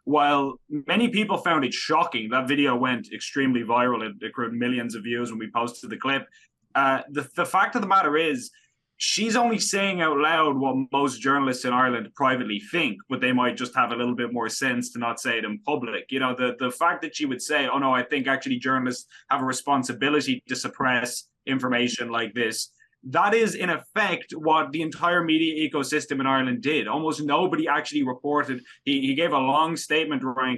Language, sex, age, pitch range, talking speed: English, male, 20-39, 125-175 Hz, 205 wpm